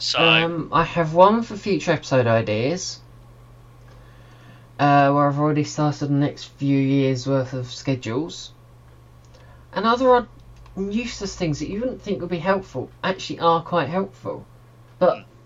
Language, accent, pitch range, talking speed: English, British, 120-170 Hz, 140 wpm